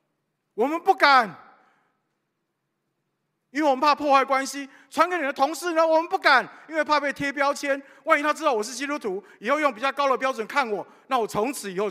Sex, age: male, 50-69